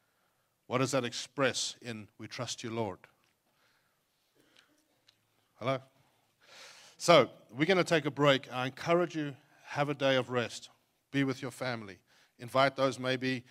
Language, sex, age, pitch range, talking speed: English, male, 50-69, 120-140 Hz, 140 wpm